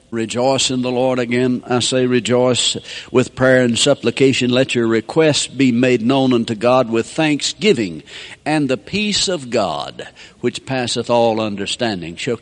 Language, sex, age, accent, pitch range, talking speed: English, male, 60-79, American, 120-155 Hz, 155 wpm